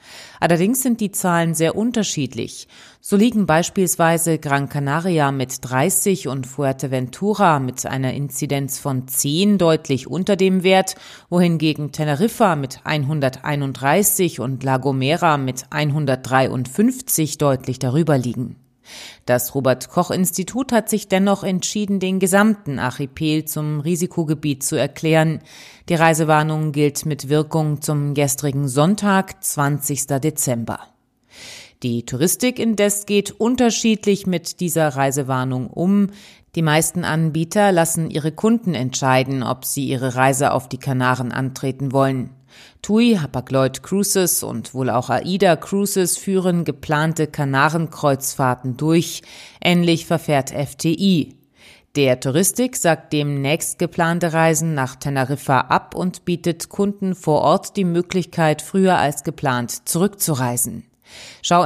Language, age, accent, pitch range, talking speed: German, 30-49, German, 135-180 Hz, 115 wpm